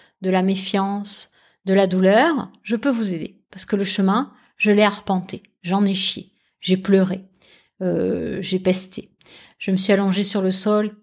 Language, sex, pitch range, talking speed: French, female, 185-230 Hz, 175 wpm